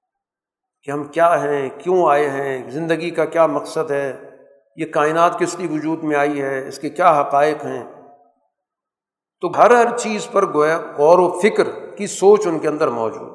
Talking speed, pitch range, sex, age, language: 180 wpm, 150-215 Hz, male, 50-69, Urdu